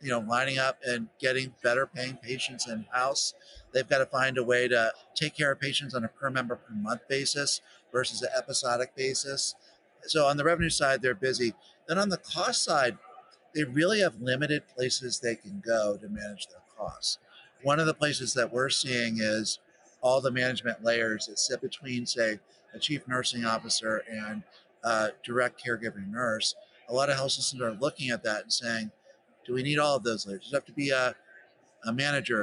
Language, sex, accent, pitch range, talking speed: English, male, American, 115-135 Hz, 200 wpm